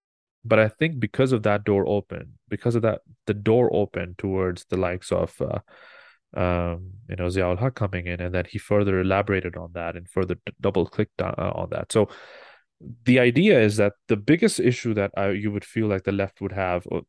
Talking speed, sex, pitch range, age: 205 wpm, male, 95-105 Hz, 20-39